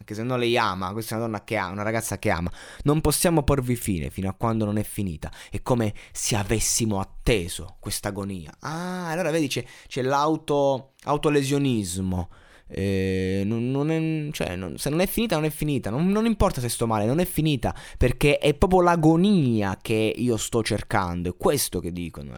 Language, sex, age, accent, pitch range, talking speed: Italian, male, 20-39, native, 105-150 Hz, 195 wpm